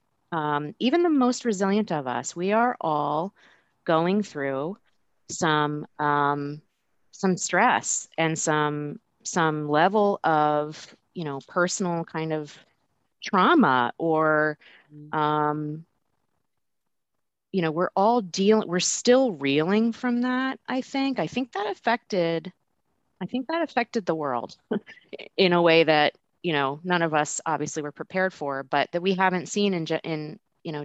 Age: 30-49